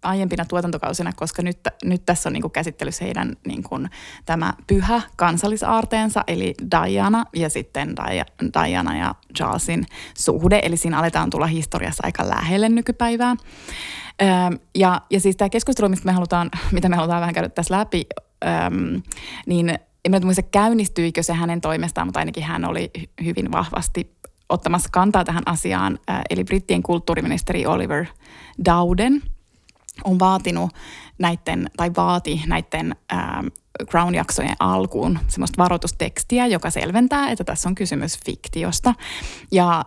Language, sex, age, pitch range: Finnish, female, 20-39, 160-195 Hz